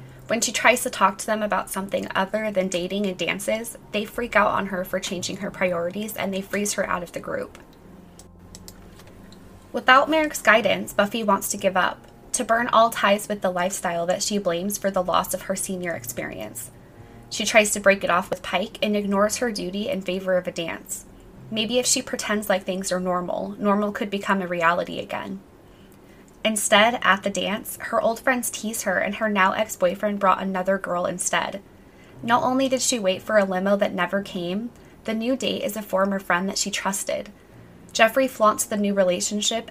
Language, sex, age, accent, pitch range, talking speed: English, female, 20-39, American, 180-215 Hz, 195 wpm